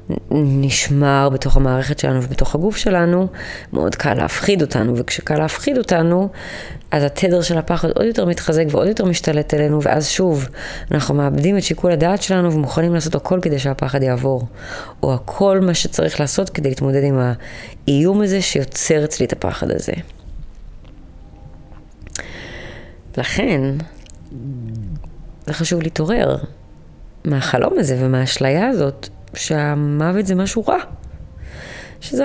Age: 20-39